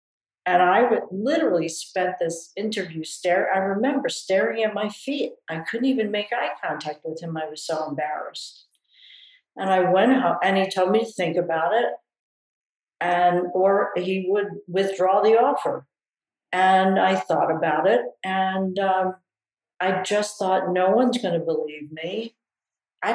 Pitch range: 165-195 Hz